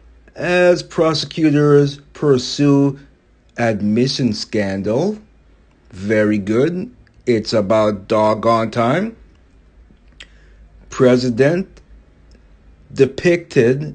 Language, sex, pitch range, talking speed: English, male, 110-160 Hz, 55 wpm